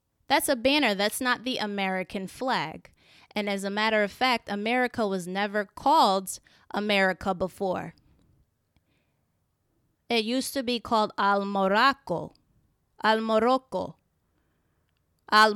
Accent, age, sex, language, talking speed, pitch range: American, 20-39, female, English, 115 wpm, 190-230 Hz